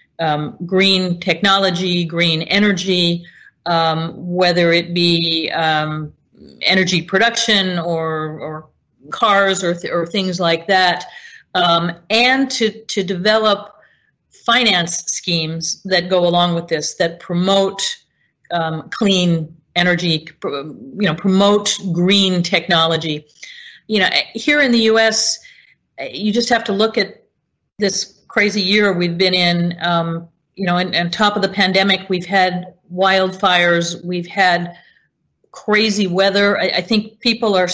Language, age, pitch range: English, 40-59, 170-205 Hz